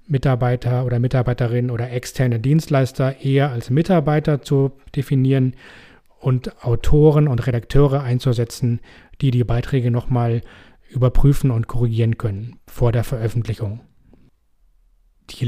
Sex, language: male, German